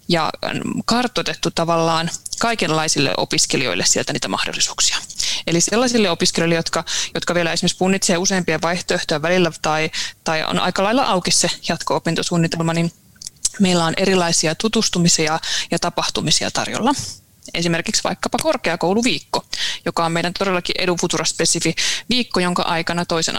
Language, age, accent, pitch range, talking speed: Finnish, 20-39, native, 165-205 Hz, 120 wpm